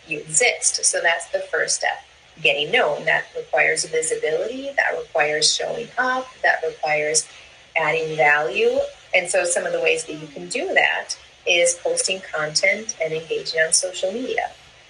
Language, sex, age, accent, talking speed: English, female, 30-49, American, 155 wpm